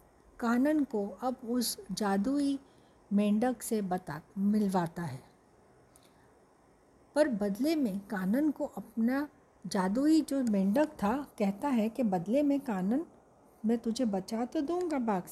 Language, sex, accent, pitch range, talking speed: Hindi, female, native, 200-260 Hz, 120 wpm